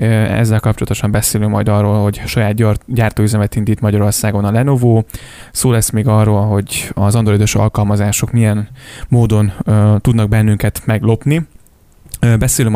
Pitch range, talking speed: 105-115 Hz, 135 wpm